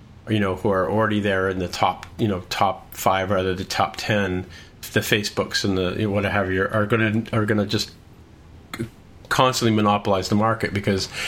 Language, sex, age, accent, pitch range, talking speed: English, male, 40-59, American, 95-115 Hz, 190 wpm